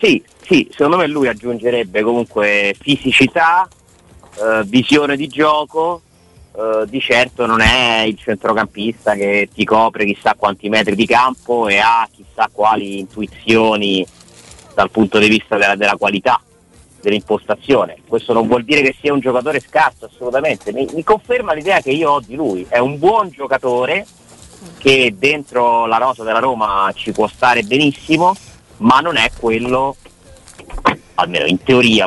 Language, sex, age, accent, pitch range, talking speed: Italian, male, 30-49, native, 105-130 Hz, 150 wpm